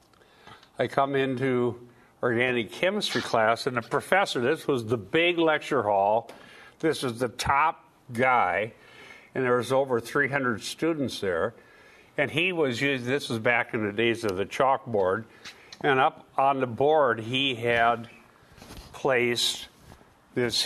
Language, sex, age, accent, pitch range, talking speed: English, male, 50-69, American, 115-140 Hz, 140 wpm